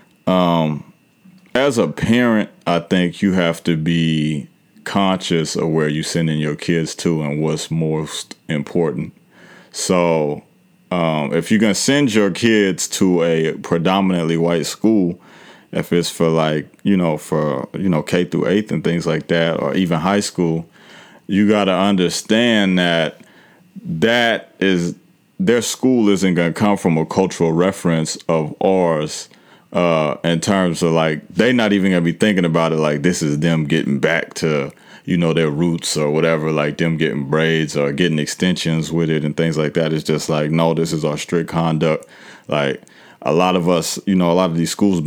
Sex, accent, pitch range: male, American, 80-95 Hz